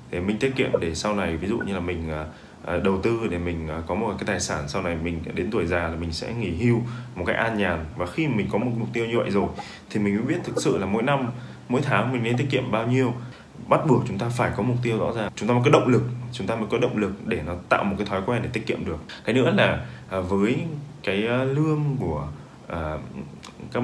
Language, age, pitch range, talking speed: Vietnamese, 20-39, 90-125 Hz, 260 wpm